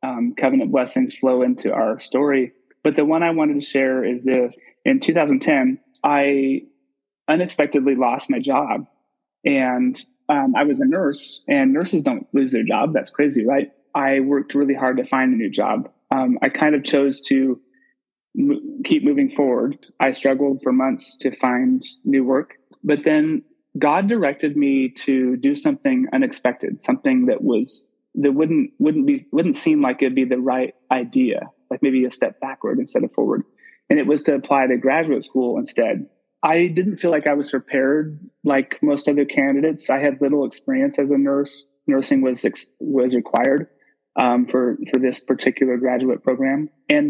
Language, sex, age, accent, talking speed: English, male, 20-39, American, 170 wpm